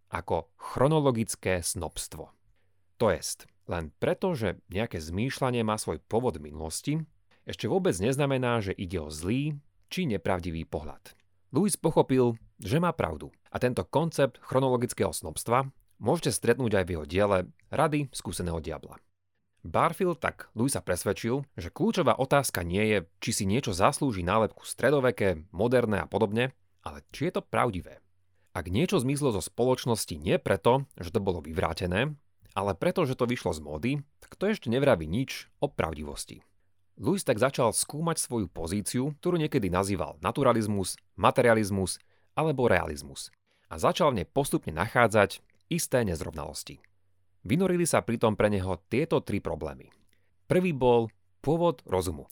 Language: Slovak